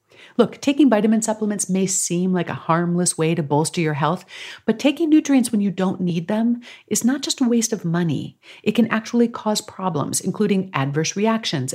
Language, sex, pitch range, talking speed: English, female, 155-220 Hz, 190 wpm